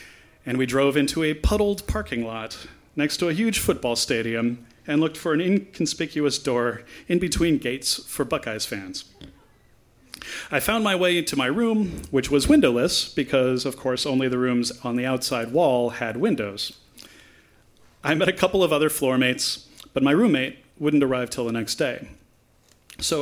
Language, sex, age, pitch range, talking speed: English, male, 40-59, 125-155 Hz, 170 wpm